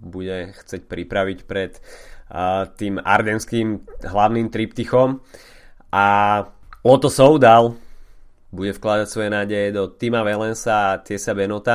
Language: Slovak